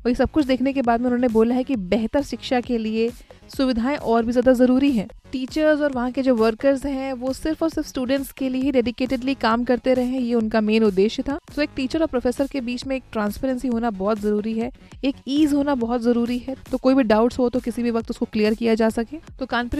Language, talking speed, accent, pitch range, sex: Hindi, 250 wpm, native, 230-275 Hz, female